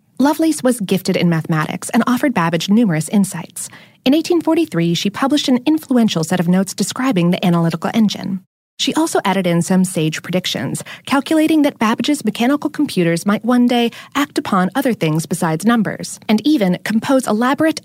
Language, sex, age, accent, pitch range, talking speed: English, female, 30-49, American, 180-270 Hz, 160 wpm